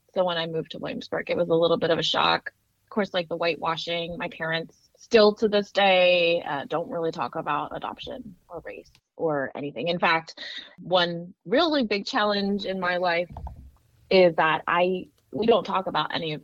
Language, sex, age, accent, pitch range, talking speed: English, female, 20-39, American, 160-200 Hz, 195 wpm